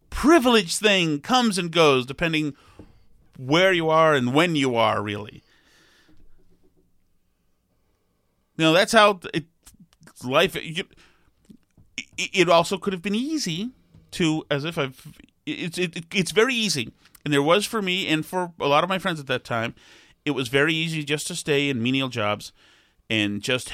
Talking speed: 155 wpm